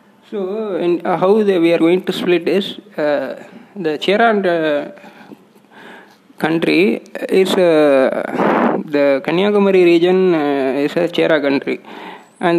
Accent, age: native, 20-39